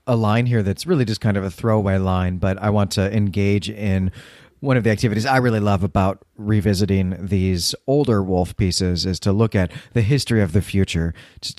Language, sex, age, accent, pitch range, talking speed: English, male, 30-49, American, 95-120 Hz, 205 wpm